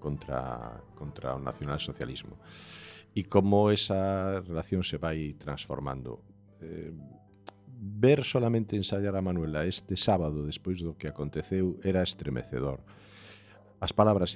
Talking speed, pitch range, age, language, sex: 130 wpm, 80-100 Hz, 50-69, Spanish, male